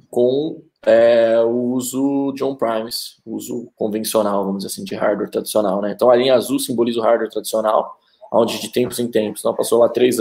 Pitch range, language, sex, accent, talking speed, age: 110-130 Hz, Portuguese, male, Brazilian, 190 wpm, 20-39